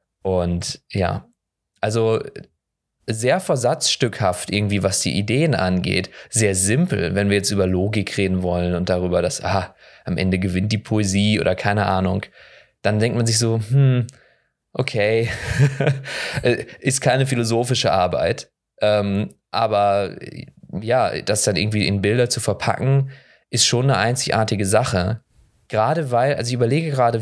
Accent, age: German, 20-39